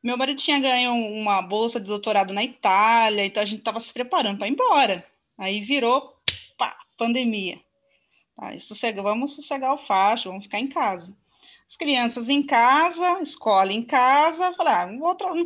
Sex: female